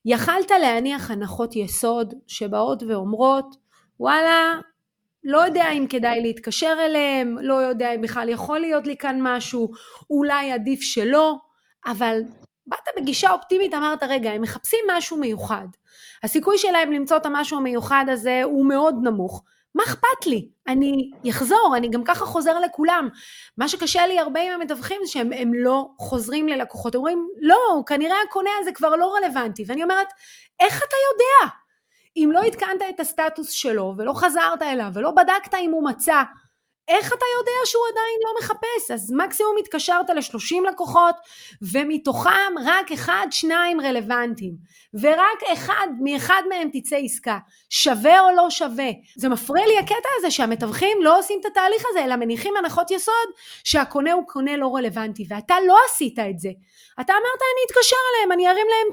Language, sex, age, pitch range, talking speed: Hebrew, female, 30-49, 250-365 Hz, 155 wpm